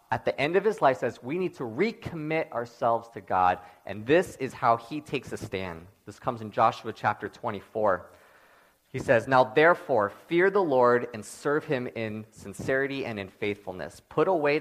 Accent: American